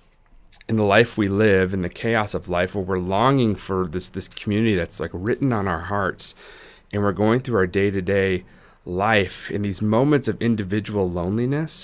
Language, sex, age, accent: English, male, 30-49, American